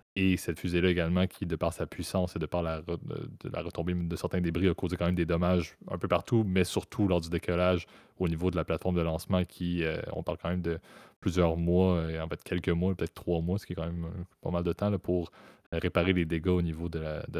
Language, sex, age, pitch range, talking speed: French, male, 20-39, 85-95 Hz, 245 wpm